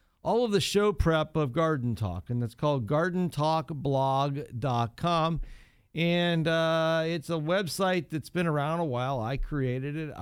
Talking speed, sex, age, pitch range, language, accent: 145 wpm, male, 50-69, 125-160 Hz, English, American